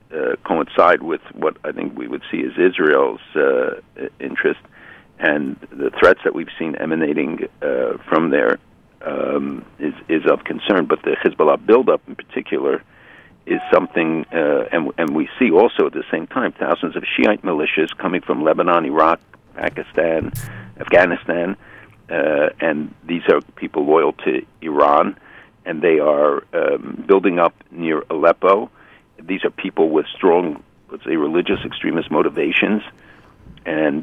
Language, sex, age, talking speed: English, male, 60-79, 150 wpm